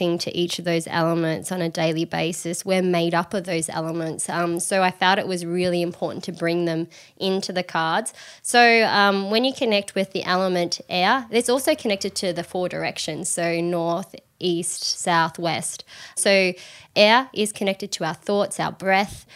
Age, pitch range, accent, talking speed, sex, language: 20-39, 170-210 Hz, Australian, 185 wpm, female, English